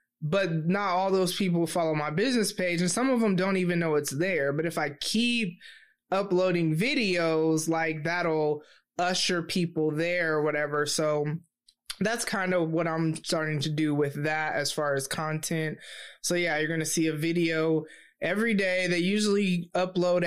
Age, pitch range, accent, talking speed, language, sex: 20-39, 155-185 Hz, American, 175 wpm, English, male